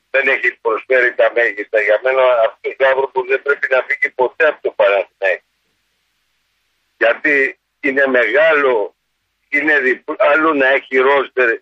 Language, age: Greek, 50-69